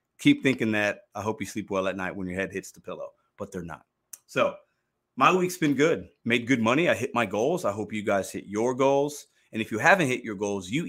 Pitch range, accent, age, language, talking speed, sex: 110-145 Hz, American, 30-49, English, 255 wpm, male